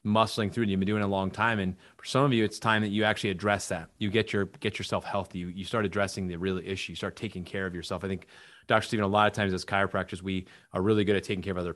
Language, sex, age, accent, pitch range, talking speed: English, male, 30-49, American, 95-110 Hz, 305 wpm